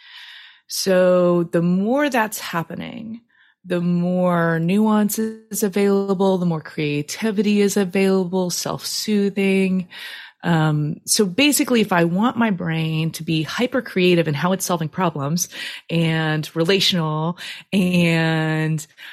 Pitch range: 170-215 Hz